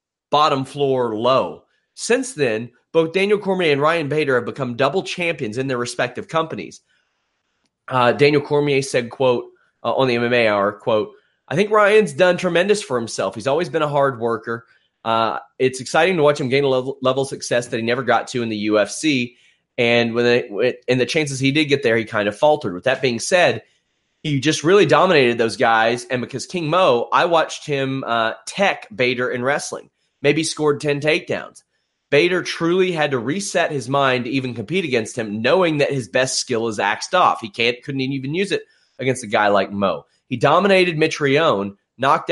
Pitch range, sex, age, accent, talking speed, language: 120-155 Hz, male, 30-49, American, 195 wpm, English